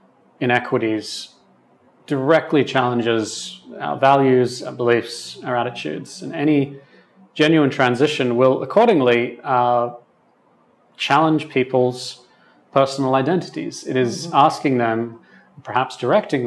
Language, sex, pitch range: English, male, 120-145 Hz